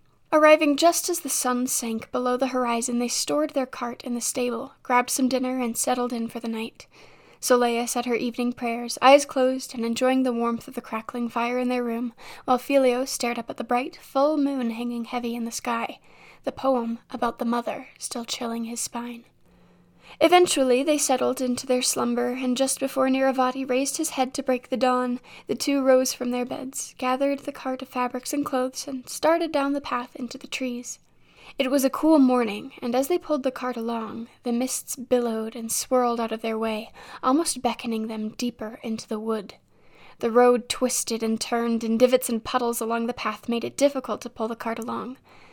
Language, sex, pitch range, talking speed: English, female, 235-260 Hz, 200 wpm